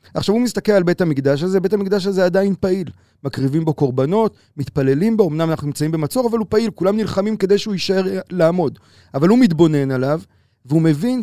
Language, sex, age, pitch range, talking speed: Hebrew, male, 30-49, 150-200 Hz, 190 wpm